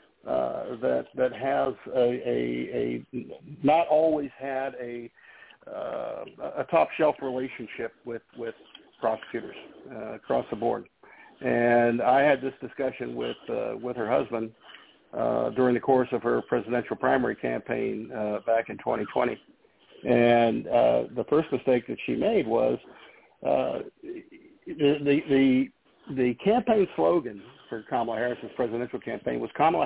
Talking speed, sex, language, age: 135 wpm, male, English, 60-79